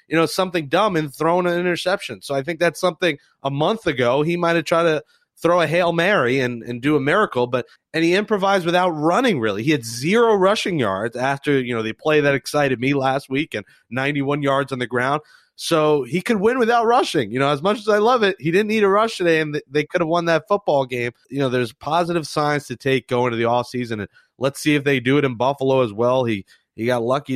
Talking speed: 250 wpm